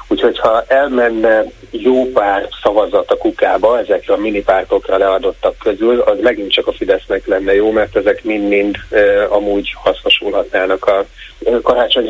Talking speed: 135 wpm